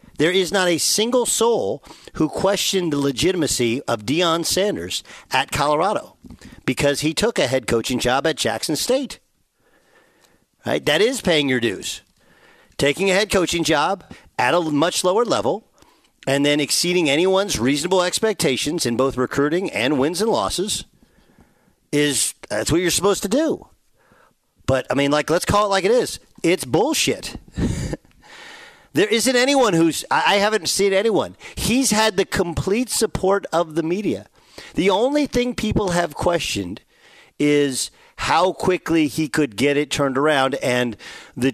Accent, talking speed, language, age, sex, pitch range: American, 155 wpm, English, 50-69, male, 135-195 Hz